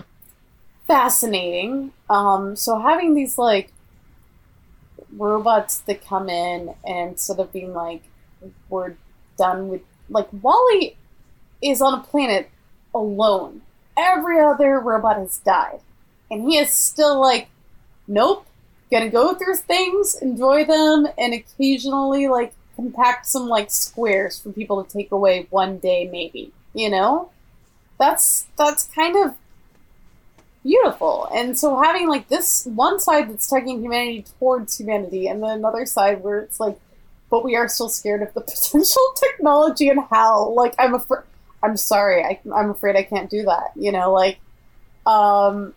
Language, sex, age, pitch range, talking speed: English, female, 20-39, 200-285 Hz, 145 wpm